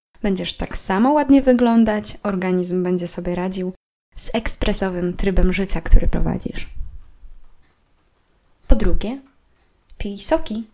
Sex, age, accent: female, 20-39, native